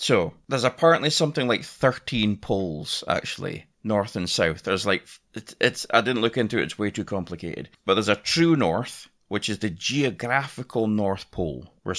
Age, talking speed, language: 30-49, 180 wpm, English